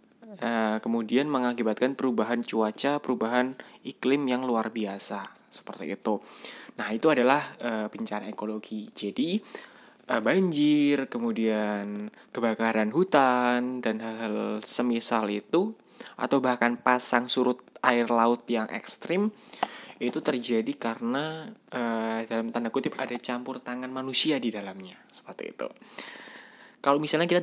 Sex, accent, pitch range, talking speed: male, native, 115-145 Hz, 120 wpm